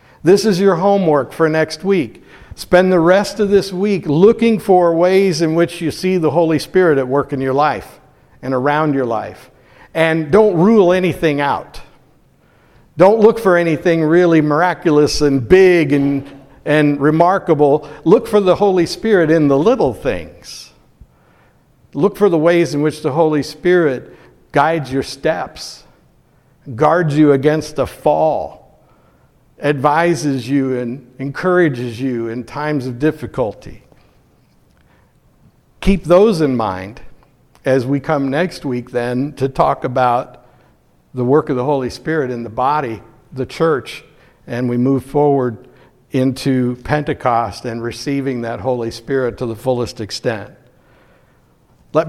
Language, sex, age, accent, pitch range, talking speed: English, male, 60-79, American, 125-165 Hz, 140 wpm